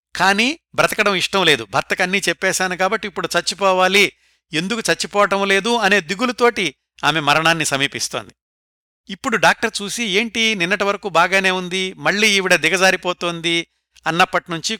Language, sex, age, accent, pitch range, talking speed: Telugu, male, 60-79, native, 145-190 Hz, 115 wpm